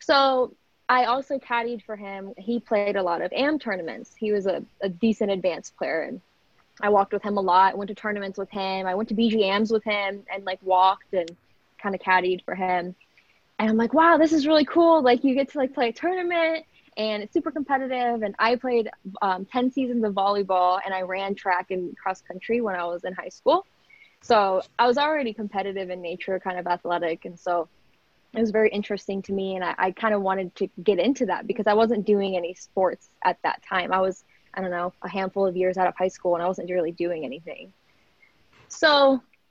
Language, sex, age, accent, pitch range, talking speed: English, female, 20-39, American, 185-235 Hz, 220 wpm